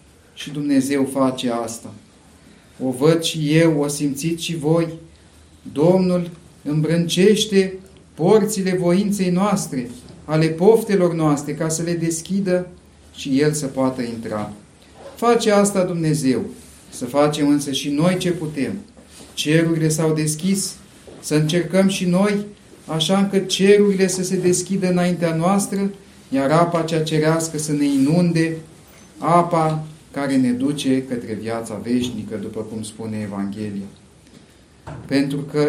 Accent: native